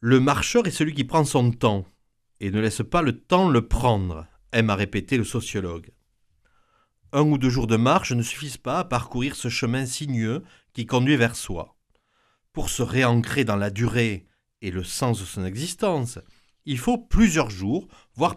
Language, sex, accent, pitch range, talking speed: French, male, French, 110-145 Hz, 190 wpm